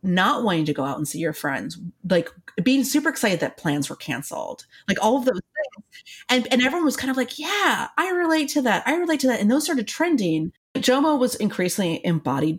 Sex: female